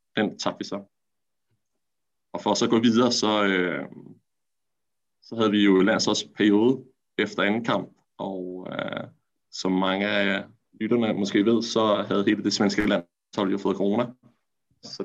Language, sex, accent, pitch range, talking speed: Danish, male, native, 95-110 Hz, 165 wpm